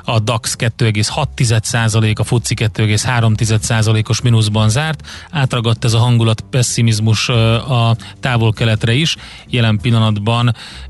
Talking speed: 105 wpm